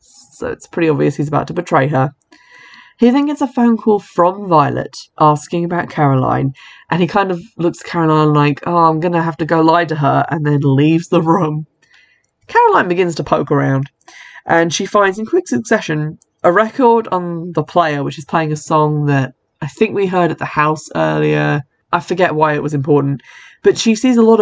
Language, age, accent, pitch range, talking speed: English, 20-39, British, 145-190 Hz, 205 wpm